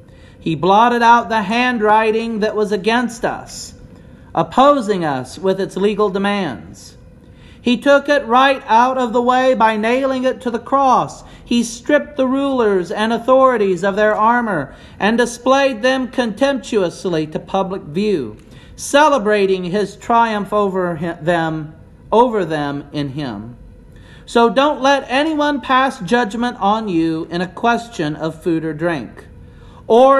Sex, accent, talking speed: male, American, 135 wpm